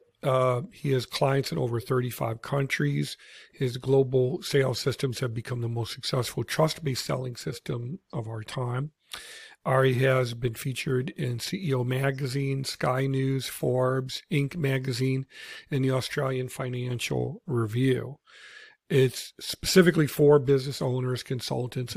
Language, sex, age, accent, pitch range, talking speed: English, male, 50-69, American, 125-140 Hz, 125 wpm